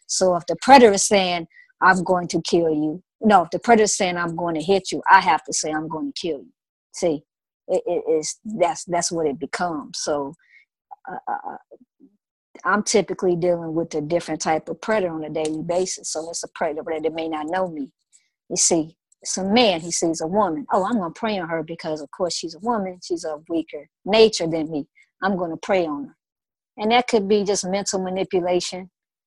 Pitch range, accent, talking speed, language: 165-205 Hz, American, 215 wpm, English